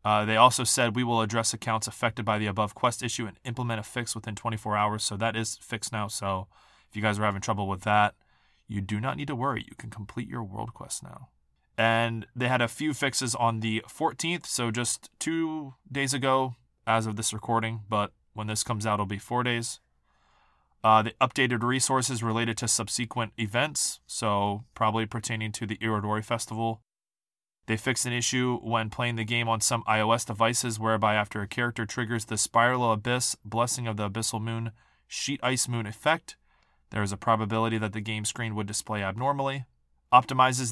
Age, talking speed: 20-39, 195 wpm